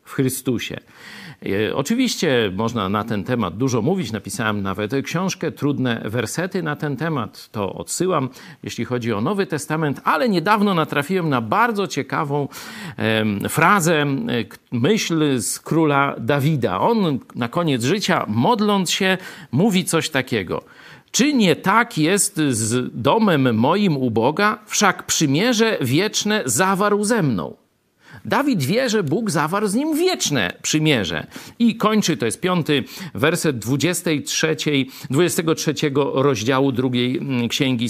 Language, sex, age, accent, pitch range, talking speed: Polish, male, 50-69, native, 125-205 Hz, 125 wpm